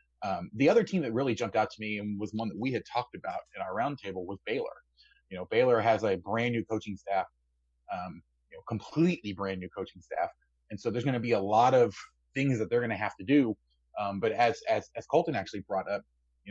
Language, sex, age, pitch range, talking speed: English, male, 30-49, 95-120 Hz, 245 wpm